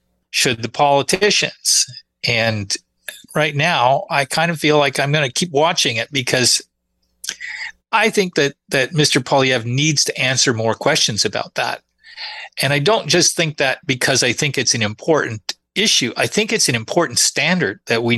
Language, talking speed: English, 170 wpm